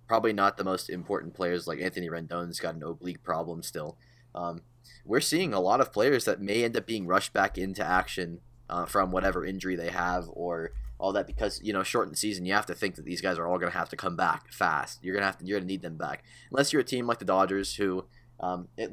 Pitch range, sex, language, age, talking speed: 85-100 Hz, male, English, 20-39, 255 wpm